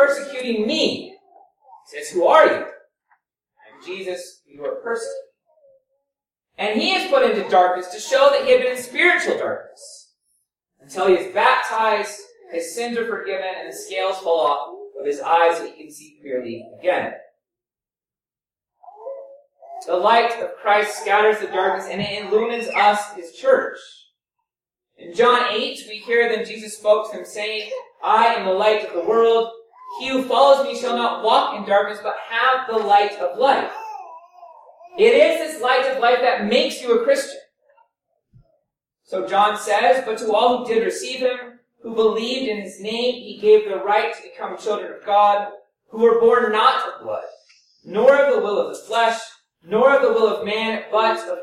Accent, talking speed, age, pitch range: American, 175 wpm, 30-49, 210-300 Hz